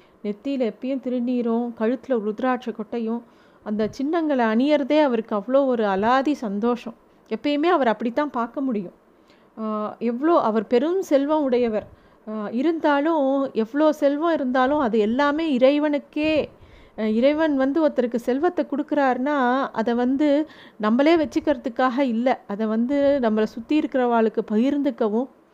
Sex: female